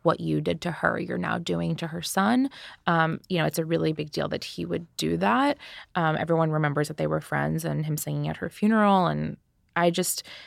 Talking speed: 230 wpm